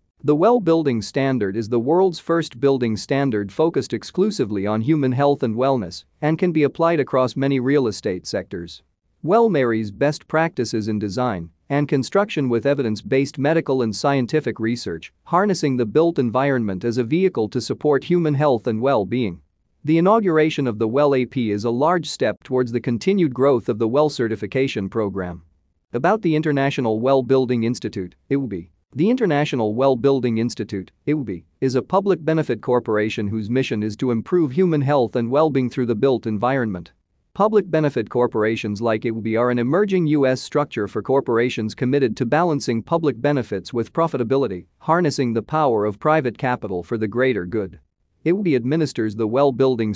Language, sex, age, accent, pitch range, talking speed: English, male, 40-59, American, 110-150 Hz, 160 wpm